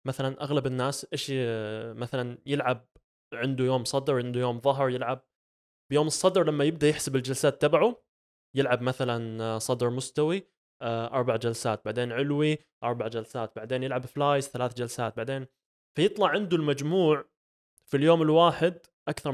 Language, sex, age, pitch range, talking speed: Arabic, male, 20-39, 120-155 Hz, 135 wpm